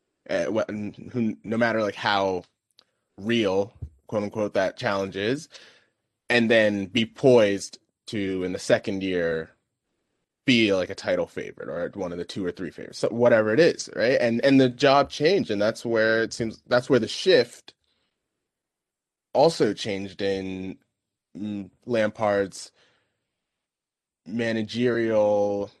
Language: English